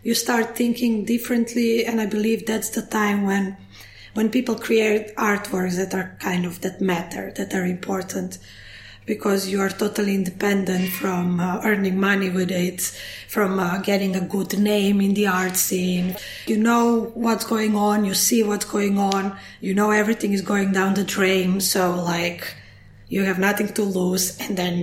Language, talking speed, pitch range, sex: English, 175 wpm, 185-215 Hz, female